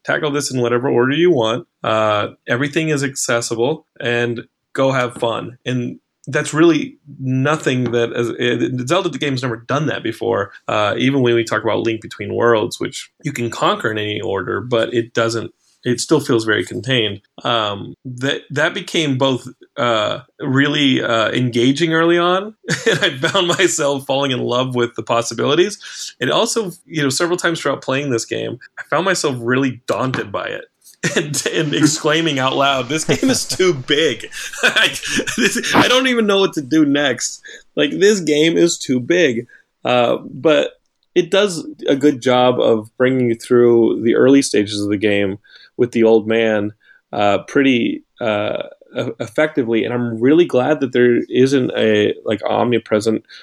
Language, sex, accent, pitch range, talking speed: English, male, American, 115-150 Hz, 170 wpm